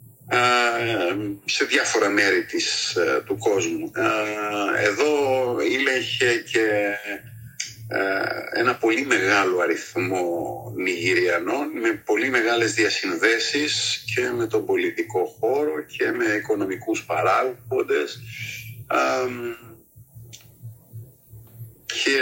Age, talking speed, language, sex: 50-69, 75 wpm, Greek, male